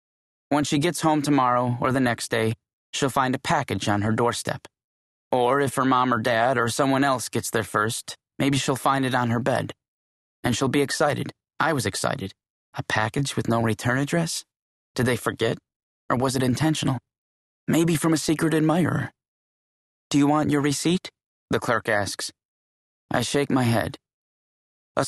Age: 20-39